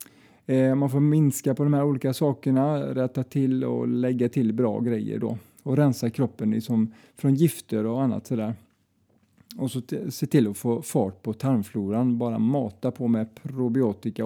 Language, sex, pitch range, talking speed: Swedish, male, 105-140 Hz, 165 wpm